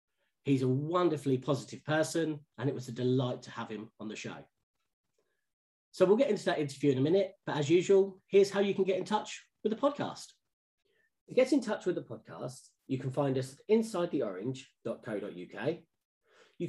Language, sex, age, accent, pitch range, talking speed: English, male, 40-59, British, 130-195 Hz, 185 wpm